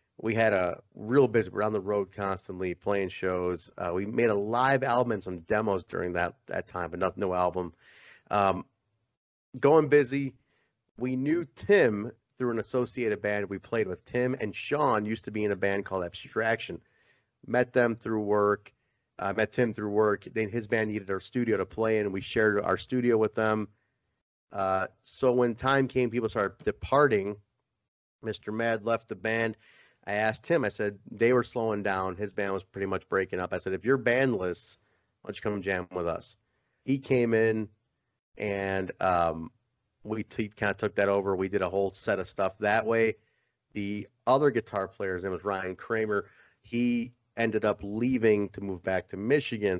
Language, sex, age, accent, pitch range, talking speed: English, male, 30-49, American, 100-120 Hz, 190 wpm